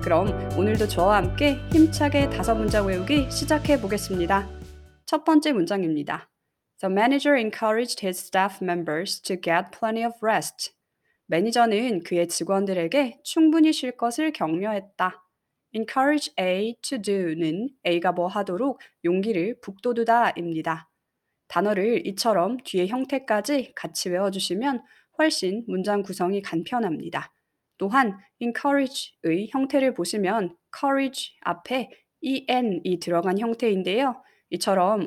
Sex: female